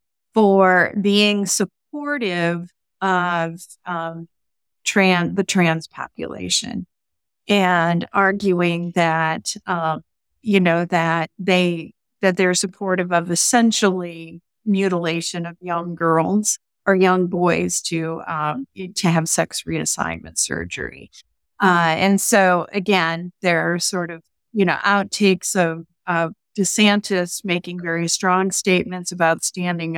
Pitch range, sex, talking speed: 165-195 Hz, female, 110 wpm